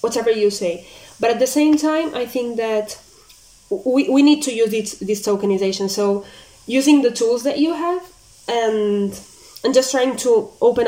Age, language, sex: 20-39, English, female